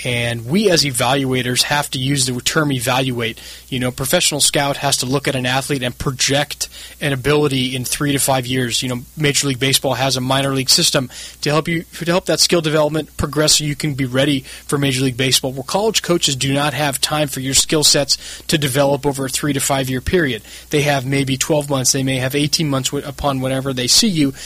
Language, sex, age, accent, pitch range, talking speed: English, male, 20-39, American, 135-155 Hz, 225 wpm